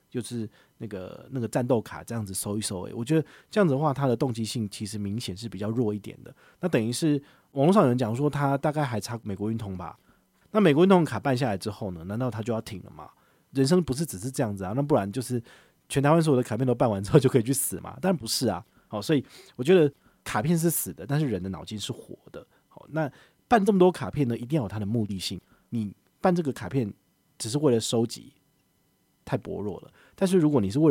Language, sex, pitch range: Chinese, male, 105-145 Hz